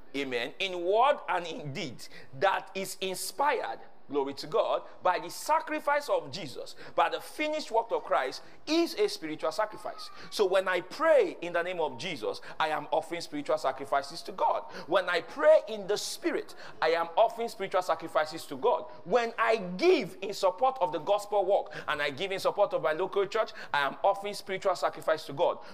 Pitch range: 185-305 Hz